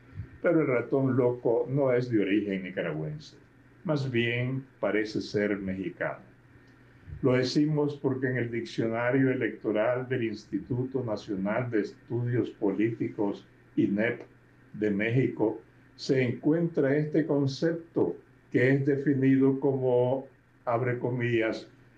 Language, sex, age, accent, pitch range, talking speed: Spanish, male, 60-79, American, 110-140 Hz, 110 wpm